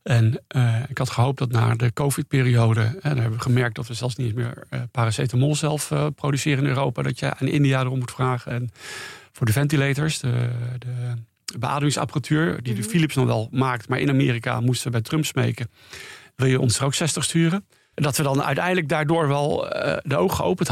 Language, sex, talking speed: Dutch, male, 205 wpm